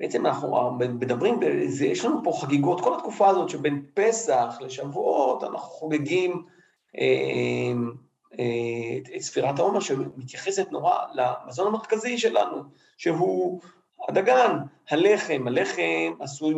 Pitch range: 125-180 Hz